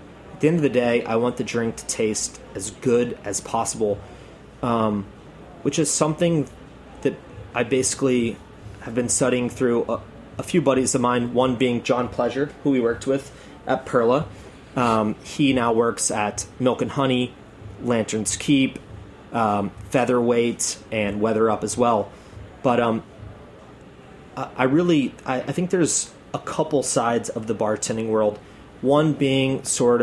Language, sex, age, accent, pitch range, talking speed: English, male, 30-49, American, 110-135 Hz, 160 wpm